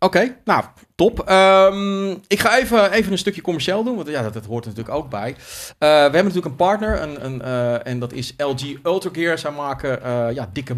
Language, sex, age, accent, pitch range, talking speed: Dutch, male, 40-59, Dutch, 130-190 Hz, 230 wpm